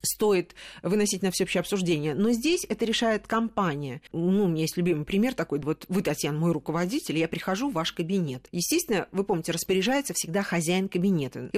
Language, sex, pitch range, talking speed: Russian, female, 170-230 Hz, 180 wpm